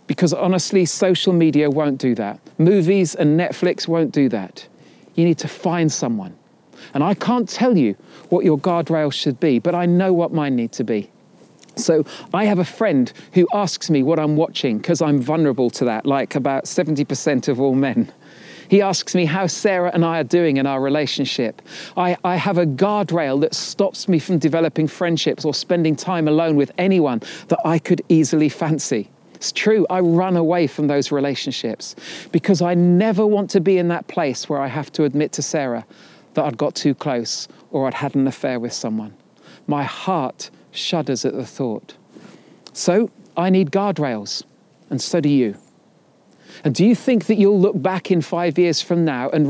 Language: English